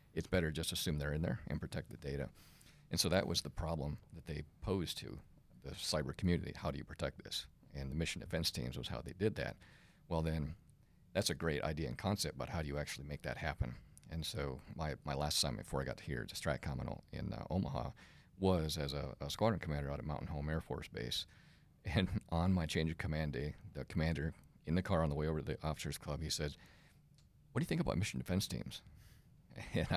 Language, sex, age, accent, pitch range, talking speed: English, male, 50-69, American, 70-85 Hz, 230 wpm